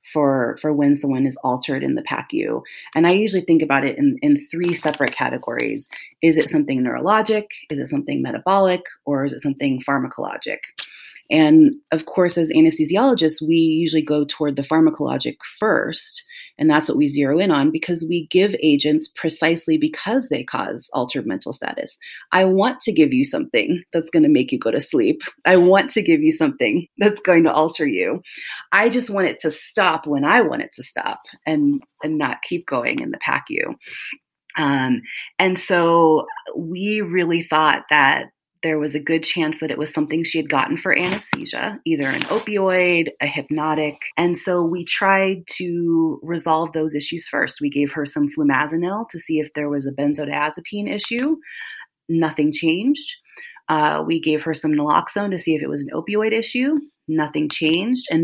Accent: American